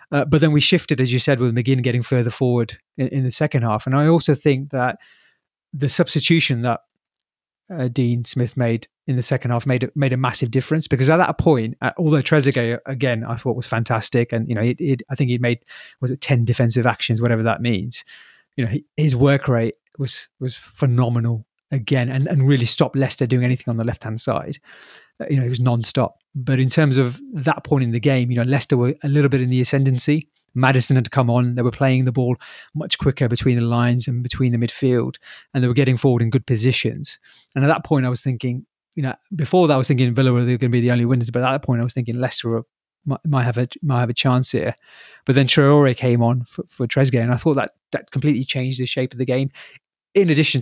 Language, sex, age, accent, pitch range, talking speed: English, male, 30-49, British, 120-140 Hz, 235 wpm